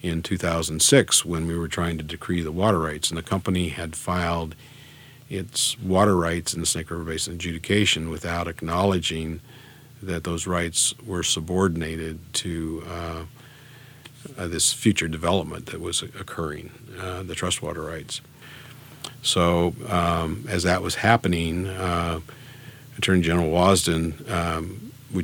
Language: English